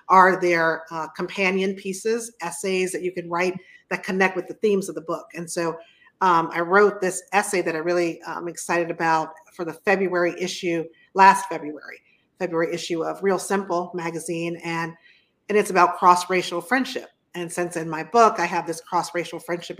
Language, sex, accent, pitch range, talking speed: English, female, American, 165-195 Hz, 180 wpm